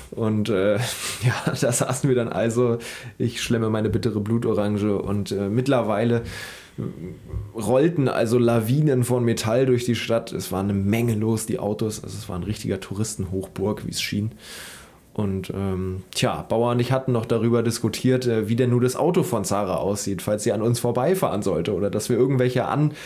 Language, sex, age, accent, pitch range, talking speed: German, male, 20-39, German, 105-125 Hz, 180 wpm